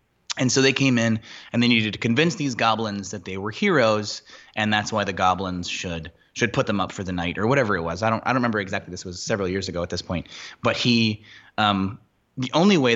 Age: 20-39